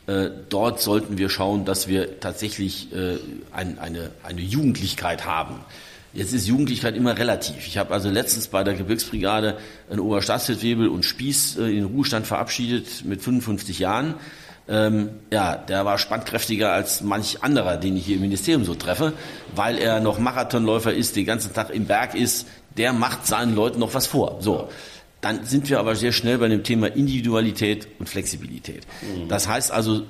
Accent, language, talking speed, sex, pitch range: German, German, 175 wpm, male, 100-120 Hz